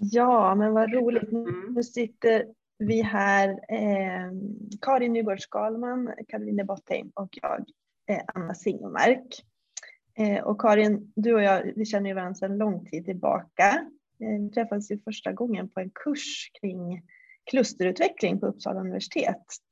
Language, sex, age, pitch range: Swedish, female, 30-49, 195-230 Hz